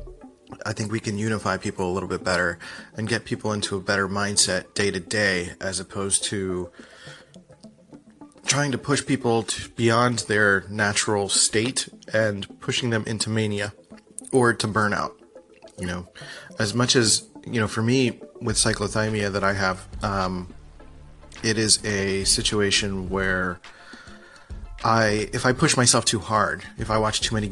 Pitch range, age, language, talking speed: 95-115 Hz, 30-49, English, 155 wpm